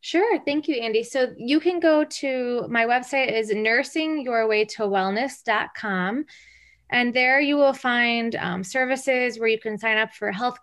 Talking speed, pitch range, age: 150 wpm, 200-245 Hz, 20-39